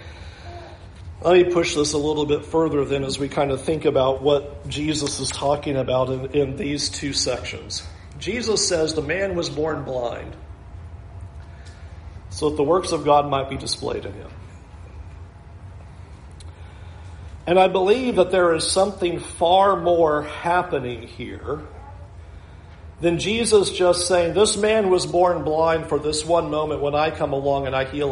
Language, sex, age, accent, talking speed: English, male, 50-69, American, 160 wpm